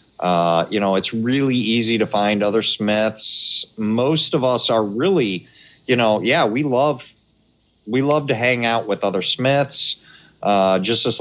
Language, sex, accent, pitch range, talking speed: English, male, American, 100-115 Hz, 165 wpm